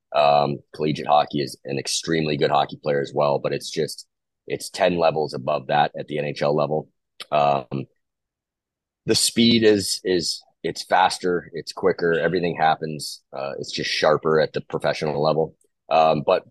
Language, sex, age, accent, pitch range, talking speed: English, male, 30-49, American, 70-80 Hz, 160 wpm